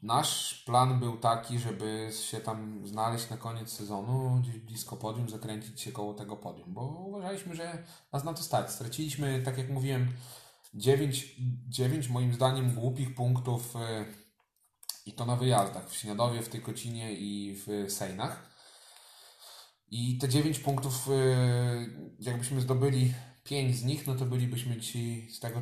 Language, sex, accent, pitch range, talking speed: Polish, male, native, 105-125 Hz, 145 wpm